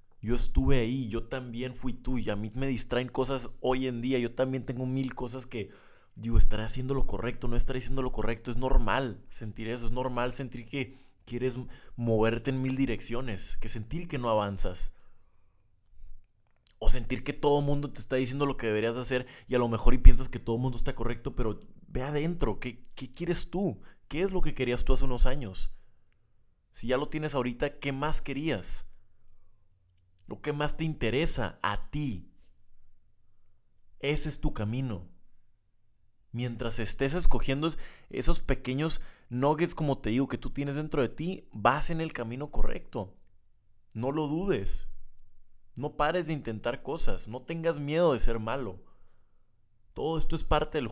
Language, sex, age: English, male, 20-39